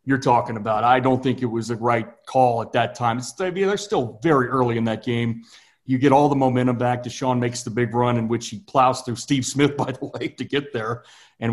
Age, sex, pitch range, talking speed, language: 40-59, male, 120-140 Hz, 255 wpm, English